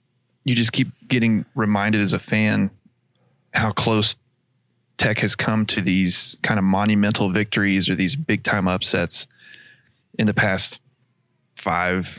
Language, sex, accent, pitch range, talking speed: English, male, American, 105-125 Hz, 140 wpm